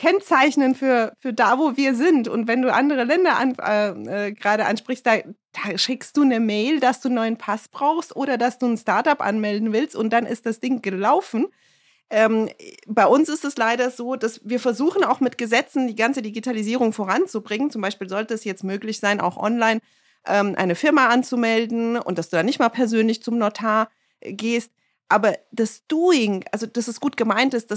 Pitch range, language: 205-250 Hz, German